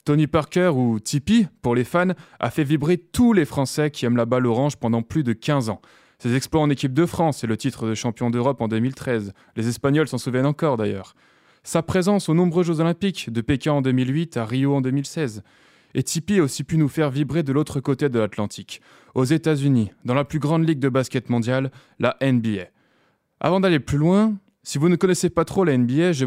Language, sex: French, male